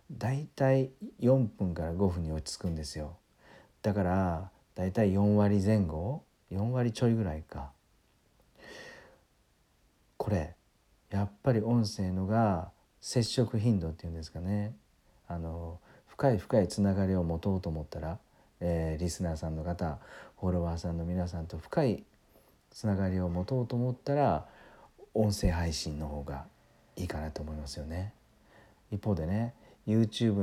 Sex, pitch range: male, 80-105 Hz